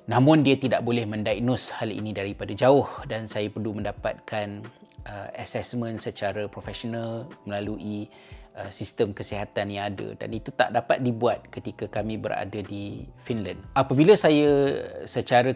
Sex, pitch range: male, 105-125 Hz